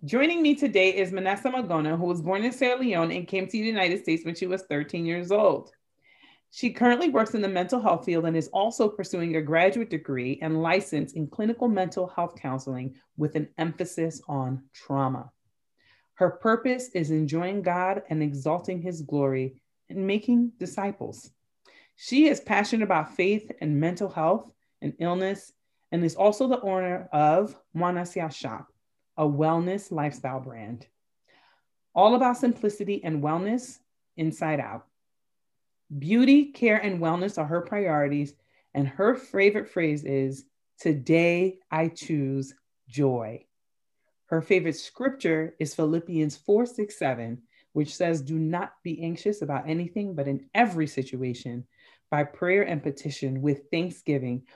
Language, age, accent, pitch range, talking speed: English, 30-49, American, 145-200 Hz, 145 wpm